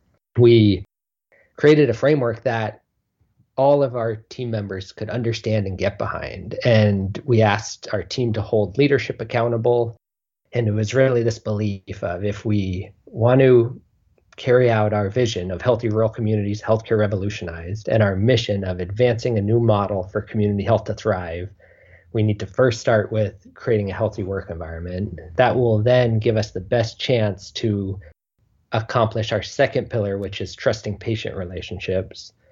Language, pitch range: English, 95-115 Hz